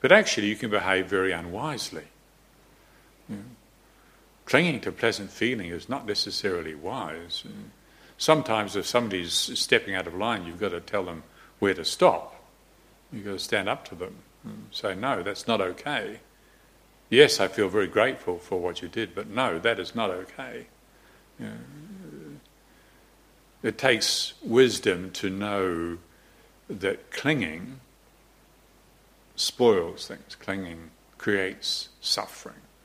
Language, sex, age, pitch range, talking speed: English, male, 60-79, 90-105 Hz, 130 wpm